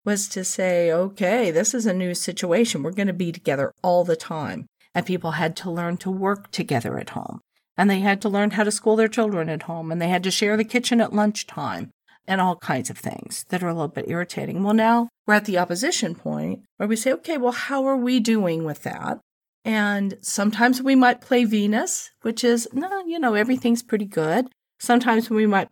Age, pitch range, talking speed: 50-69, 175-235 Hz, 220 wpm